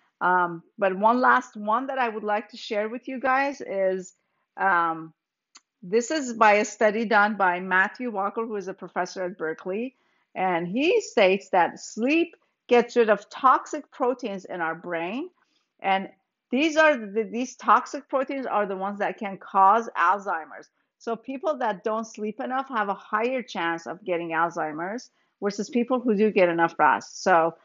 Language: English